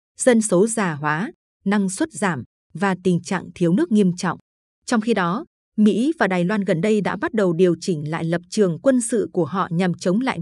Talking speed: 220 wpm